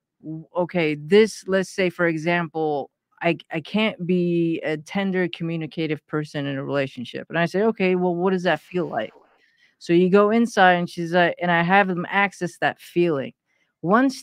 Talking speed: 175 wpm